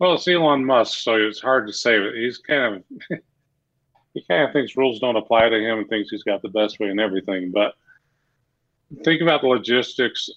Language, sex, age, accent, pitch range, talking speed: English, male, 40-59, American, 105-130 Hz, 210 wpm